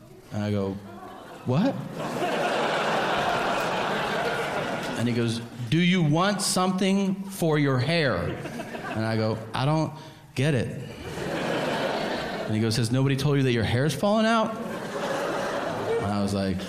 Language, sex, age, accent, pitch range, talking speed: English, male, 30-49, American, 105-170 Hz, 135 wpm